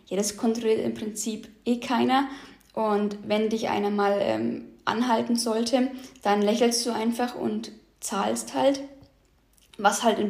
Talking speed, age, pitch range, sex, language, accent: 145 wpm, 10-29, 220-255 Hz, female, German, German